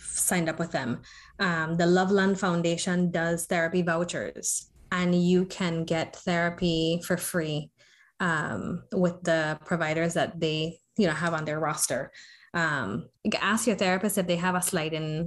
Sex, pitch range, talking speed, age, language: female, 170-220 Hz, 155 wpm, 20-39, English